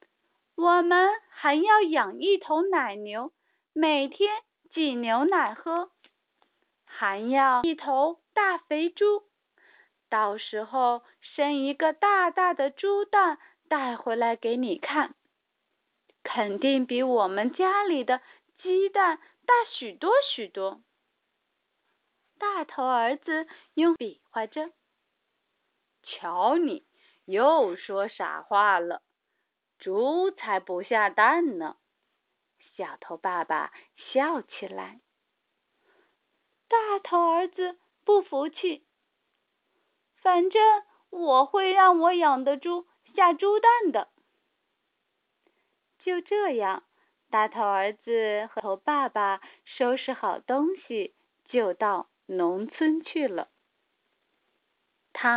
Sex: female